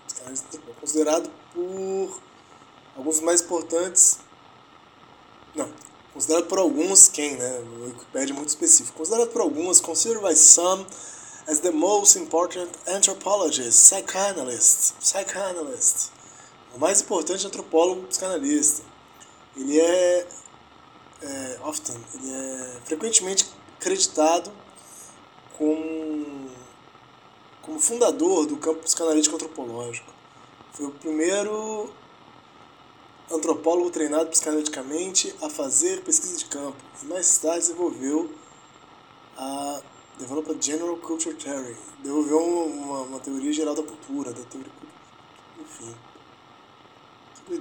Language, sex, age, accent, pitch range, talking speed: Portuguese, male, 20-39, Brazilian, 150-195 Hz, 105 wpm